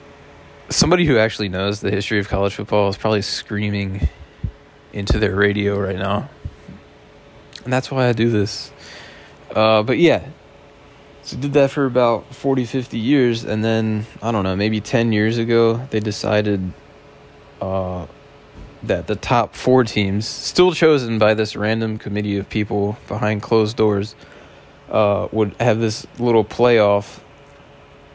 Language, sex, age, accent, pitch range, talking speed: English, male, 20-39, American, 100-120 Hz, 145 wpm